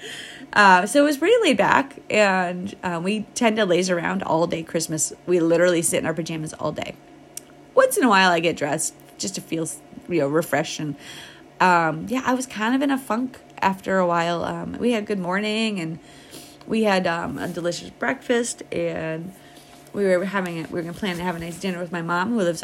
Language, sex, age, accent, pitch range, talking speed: English, female, 30-49, American, 170-230 Hz, 220 wpm